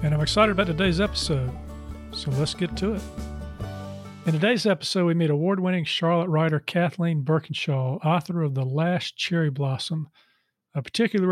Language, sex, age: English, male, 40-59